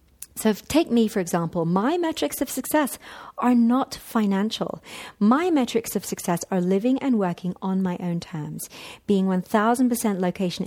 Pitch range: 185-250 Hz